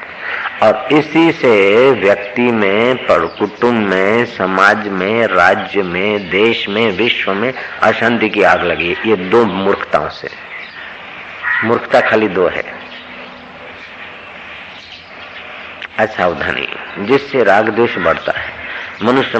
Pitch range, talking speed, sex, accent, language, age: 105-140 Hz, 105 wpm, male, native, Hindi, 50-69